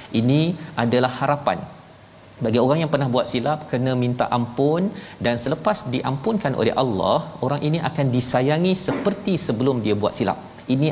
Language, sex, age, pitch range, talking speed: Malayalam, male, 40-59, 110-140 Hz, 150 wpm